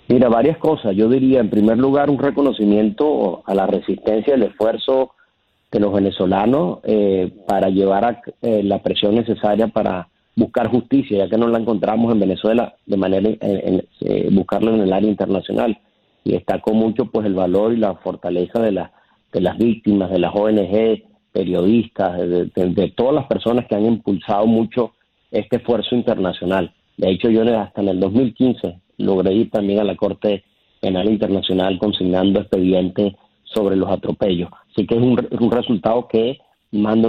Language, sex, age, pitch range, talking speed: Spanish, male, 40-59, 100-115 Hz, 175 wpm